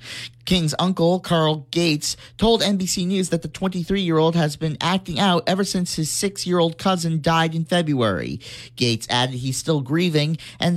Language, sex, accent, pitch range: English, male, American, 135-170 Hz